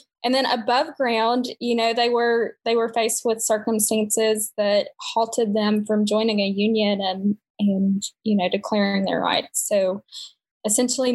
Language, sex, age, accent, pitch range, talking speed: English, female, 10-29, American, 205-235 Hz, 155 wpm